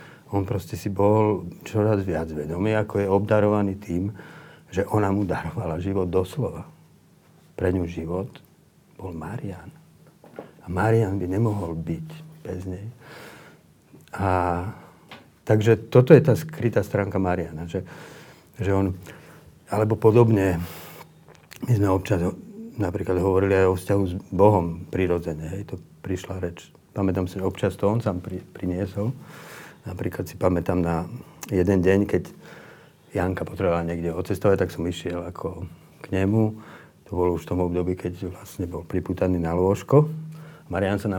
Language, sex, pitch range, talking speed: Slovak, male, 90-110 Hz, 145 wpm